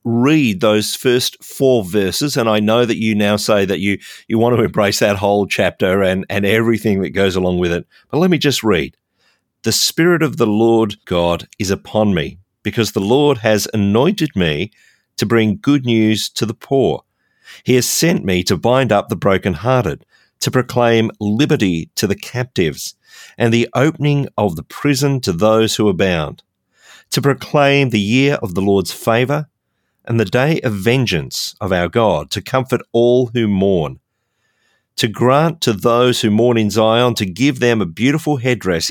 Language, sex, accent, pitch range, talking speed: English, male, Australian, 105-125 Hz, 180 wpm